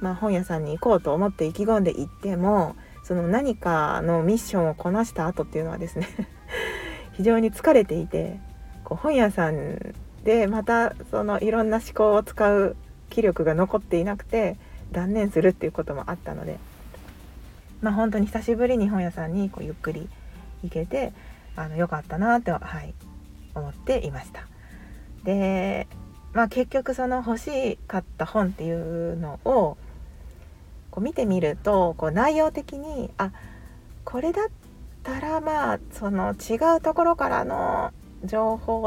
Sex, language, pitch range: female, Japanese, 170-235 Hz